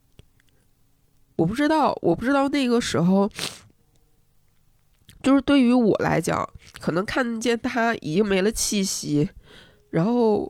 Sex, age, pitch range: female, 20-39, 165-260 Hz